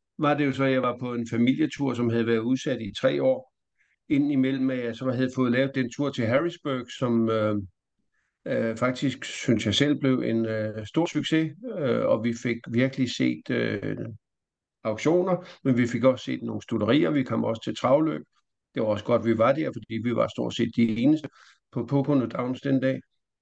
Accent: native